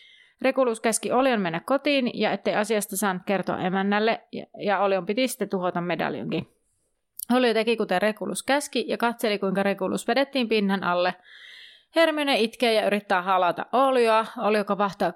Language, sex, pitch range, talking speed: Finnish, female, 185-235 Hz, 145 wpm